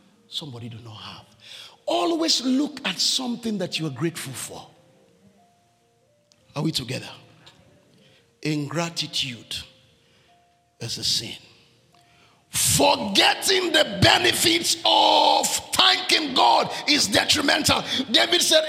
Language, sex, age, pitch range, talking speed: English, male, 50-69, 160-255 Hz, 95 wpm